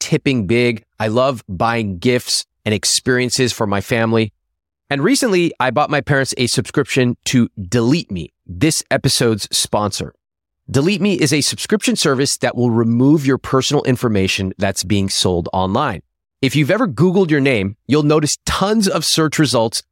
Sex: male